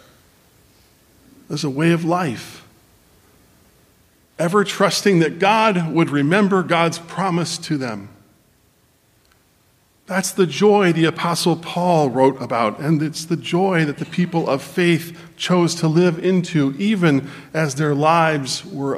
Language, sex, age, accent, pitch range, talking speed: English, male, 50-69, American, 125-165 Hz, 130 wpm